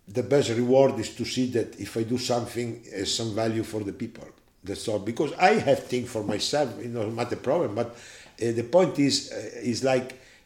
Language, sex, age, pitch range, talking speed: Slovak, male, 50-69, 105-125 Hz, 225 wpm